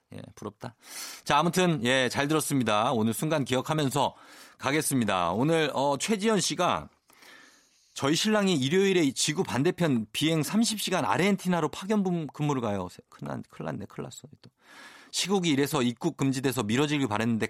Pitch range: 115-170 Hz